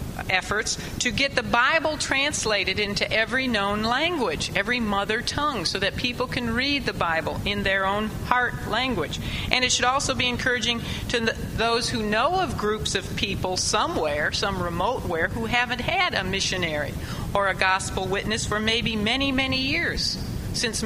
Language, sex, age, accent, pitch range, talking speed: English, female, 50-69, American, 190-270 Hz, 165 wpm